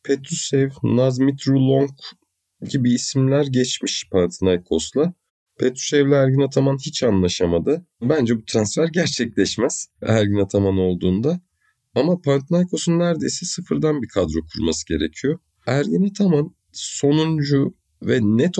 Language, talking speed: Turkish, 110 wpm